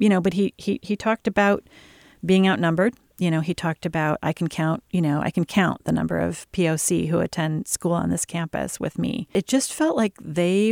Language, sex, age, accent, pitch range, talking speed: English, female, 40-59, American, 165-205 Hz, 225 wpm